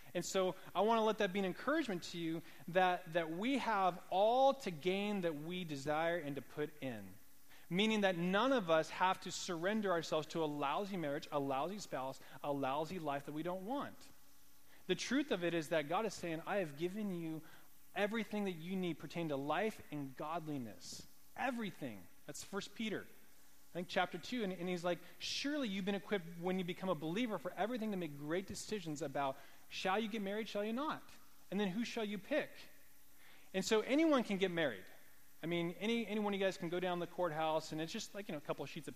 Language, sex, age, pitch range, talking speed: English, male, 30-49, 155-205 Hz, 215 wpm